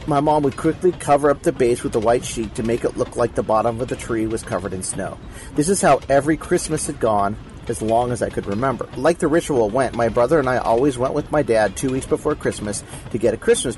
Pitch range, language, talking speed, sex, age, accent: 115-145 Hz, English, 260 wpm, male, 40-59, American